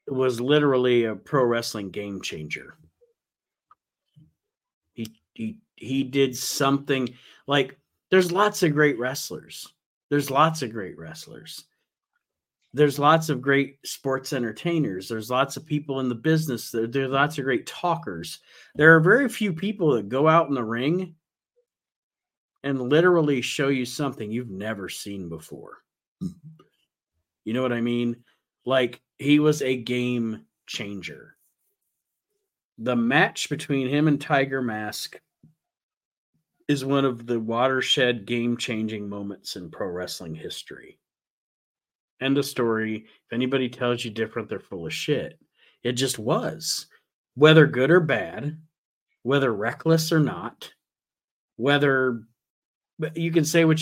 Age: 40-59